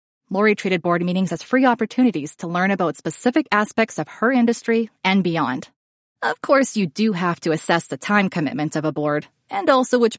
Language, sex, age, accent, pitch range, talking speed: English, female, 20-39, American, 180-255 Hz, 195 wpm